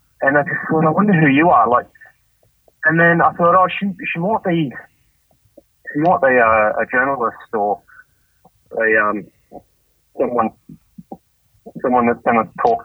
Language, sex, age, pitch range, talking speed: English, male, 30-49, 125-190 Hz, 165 wpm